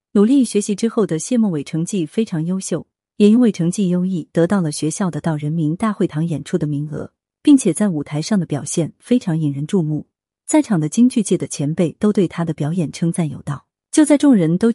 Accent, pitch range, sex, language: native, 155-225 Hz, female, Chinese